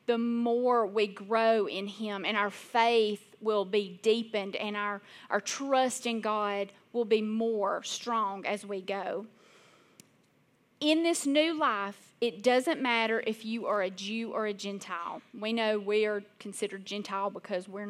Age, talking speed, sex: 30-49, 160 wpm, female